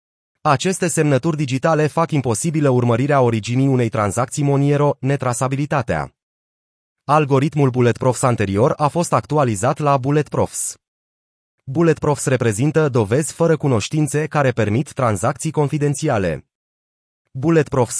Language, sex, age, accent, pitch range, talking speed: Romanian, male, 30-49, native, 115-150 Hz, 105 wpm